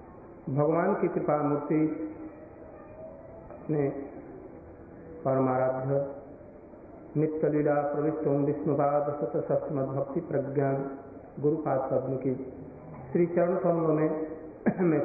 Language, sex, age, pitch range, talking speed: Hindi, male, 50-69, 140-155 Hz, 75 wpm